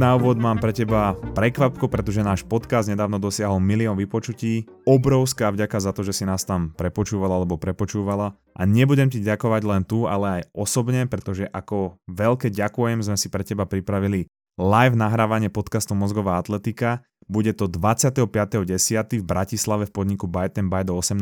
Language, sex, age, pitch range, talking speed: Slovak, male, 20-39, 95-115 Hz, 160 wpm